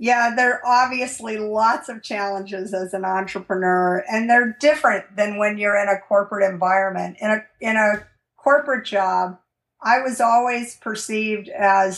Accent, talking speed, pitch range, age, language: American, 155 wpm, 195-235 Hz, 50-69, English